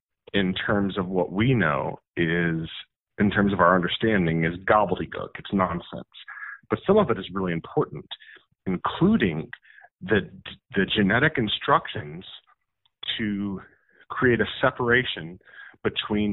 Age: 40-59